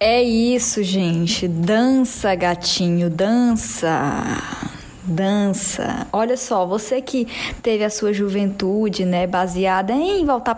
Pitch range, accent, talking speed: 195-265 Hz, Brazilian, 110 wpm